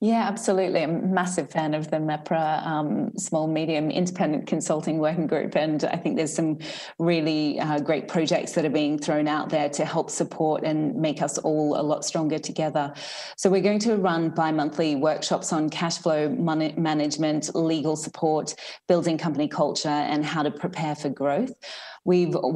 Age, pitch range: 30-49, 145-165 Hz